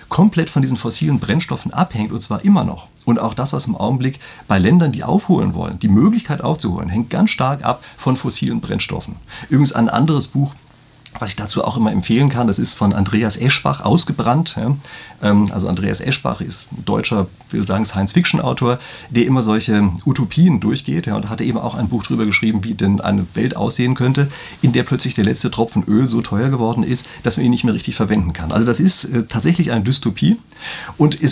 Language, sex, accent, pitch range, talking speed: German, male, German, 110-150 Hz, 200 wpm